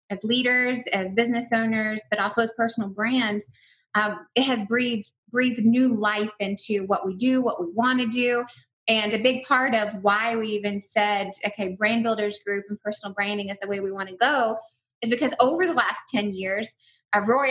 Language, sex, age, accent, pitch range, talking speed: English, female, 20-39, American, 205-230 Hz, 195 wpm